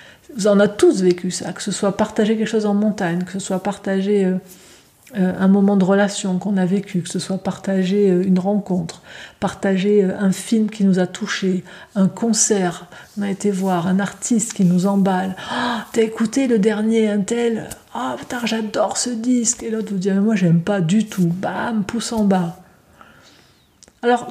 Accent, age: French, 50-69